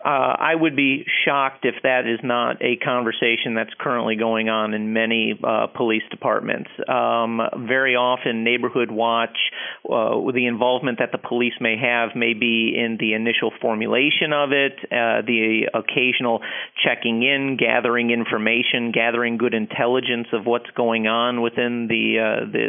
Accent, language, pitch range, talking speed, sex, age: American, English, 115-125 Hz, 155 wpm, male, 40-59